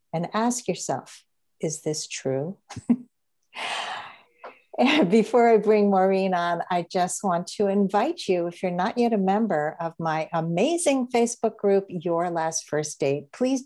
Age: 60-79